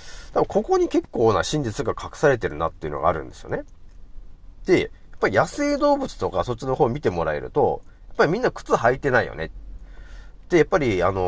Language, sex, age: Japanese, male, 40-59